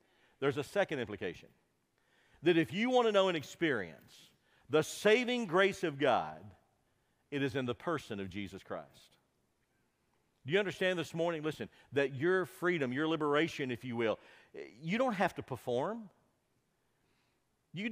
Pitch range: 150-195 Hz